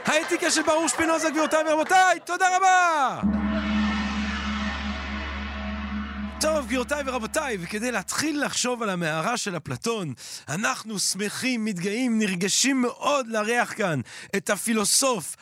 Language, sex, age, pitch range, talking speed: Hebrew, male, 40-59, 205-255 Hz, 105 wpm